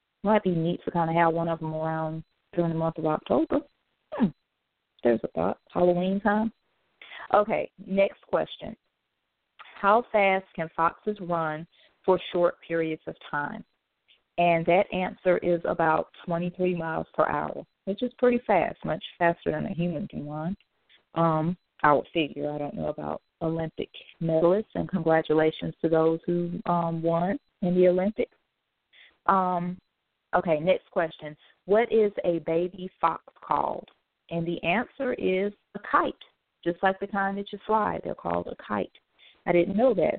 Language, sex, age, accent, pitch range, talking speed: English, female, 30-49, American, 160-195 Hz, 160 wpm